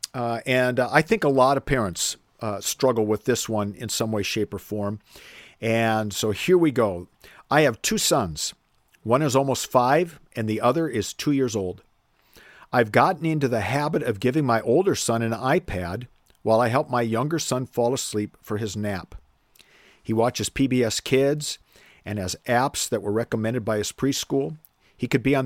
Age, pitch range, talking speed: 50-69, 110-135 Hz, 190 wpm